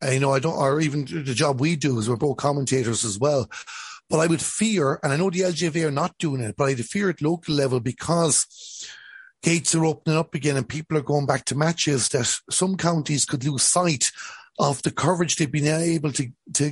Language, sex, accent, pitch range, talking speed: English, male, Irish, 140-170 Hz, 225 wpm